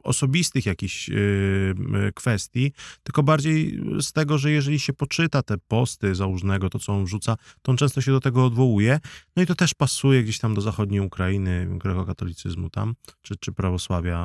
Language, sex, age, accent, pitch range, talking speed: Polish, male, 20-39, native, 95-130 Hz, 170 wpm